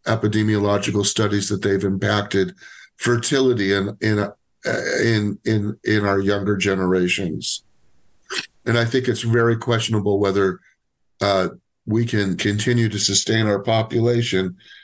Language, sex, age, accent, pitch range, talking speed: English, male, 50-69, American, 100-115 Hz, 115 wpm